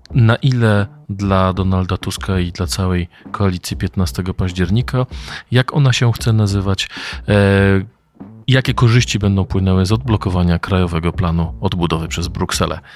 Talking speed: 125 wpm